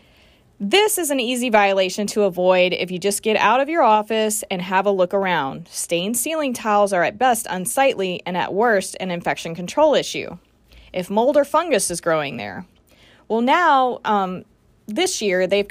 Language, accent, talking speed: English, American, 180 wpm